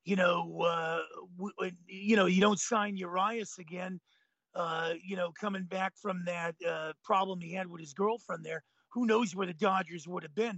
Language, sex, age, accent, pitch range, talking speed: English, male, 40-59, American, 195-230 Hz, 185 wpm